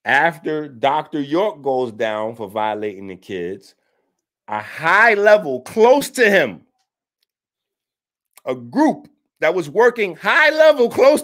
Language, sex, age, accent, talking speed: English, male, 50-69, American, 125 wpm